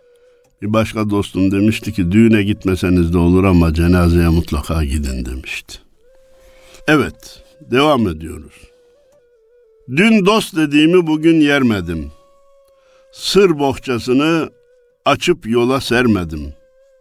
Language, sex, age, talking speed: Turkish, male, 60-79, 95 wpm